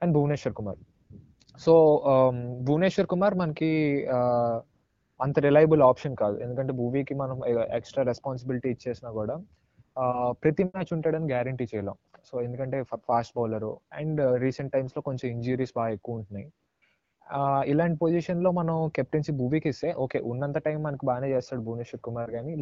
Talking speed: 140 wpm